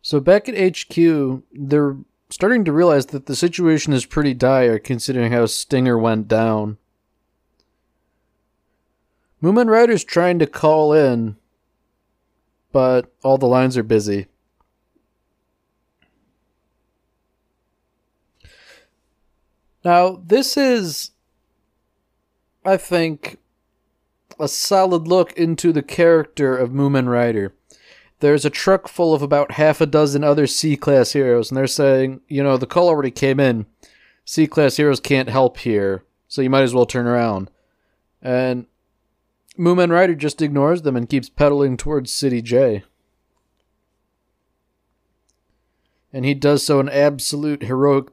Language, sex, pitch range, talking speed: English, male, 120-155 Hz, 120 wpm